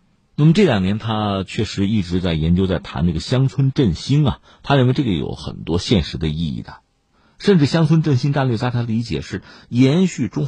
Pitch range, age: 85-140 Hz, 50-69